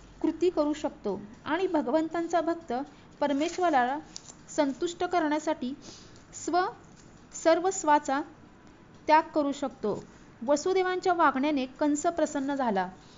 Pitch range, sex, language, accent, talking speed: 265-340 Hz, female, Marathi, native, 90 wpm